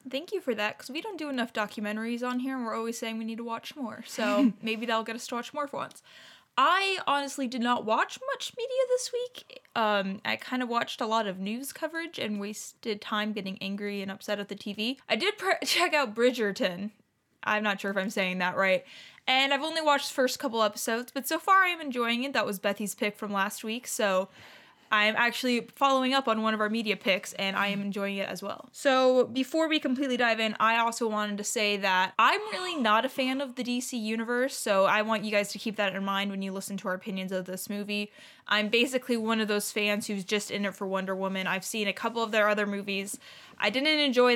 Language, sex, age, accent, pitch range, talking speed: English, female, 20-39, American, 205-255 Hz, 240 wpm